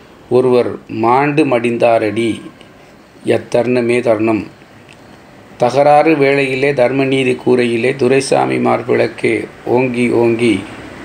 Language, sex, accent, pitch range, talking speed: Tamil, male, native, 115-135 Hz, 75 wpm